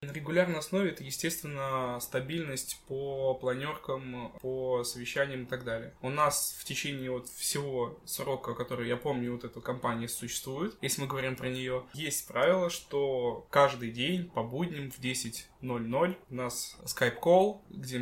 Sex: male